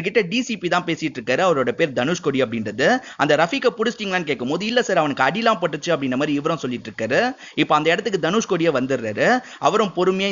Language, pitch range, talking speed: Tamil, 140-200 Hz, 185 wpm